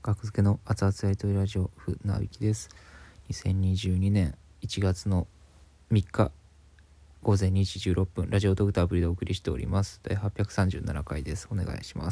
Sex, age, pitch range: male, 20-39, 75-100 Hz